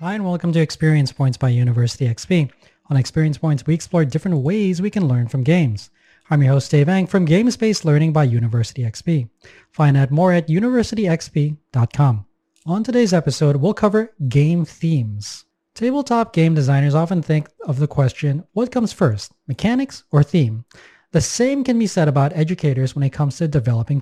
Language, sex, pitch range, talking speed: English, male, 135-185 Hz, 175 wpm